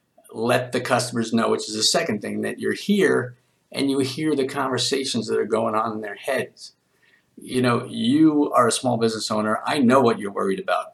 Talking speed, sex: 210 wpm, male